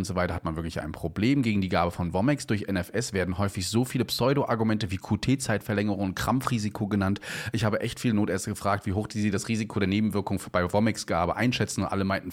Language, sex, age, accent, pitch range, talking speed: German, male, 30-49, German, 90-120 Hz, 215 wpm